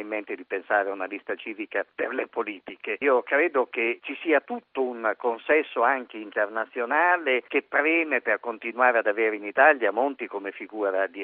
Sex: male